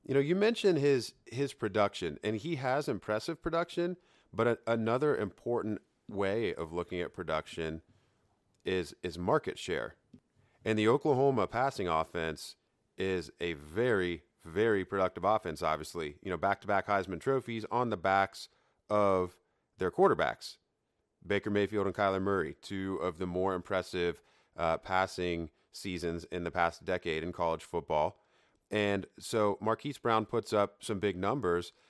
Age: 30-49